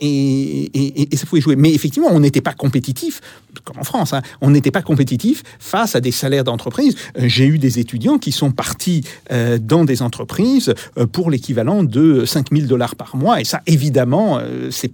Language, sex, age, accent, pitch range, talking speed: French, male, 50-69, French, 130-180 Hz, 185 wpm